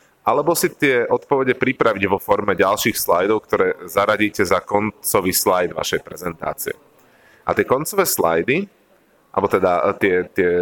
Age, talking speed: 30-49, 135 wpm